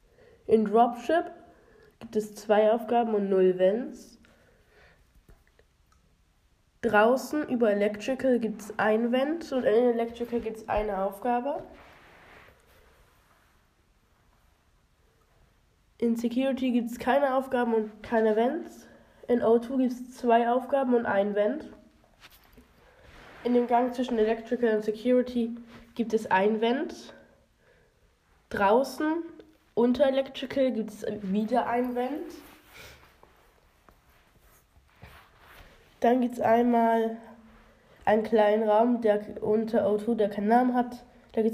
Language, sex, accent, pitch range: German, female, German, 215-245 Hz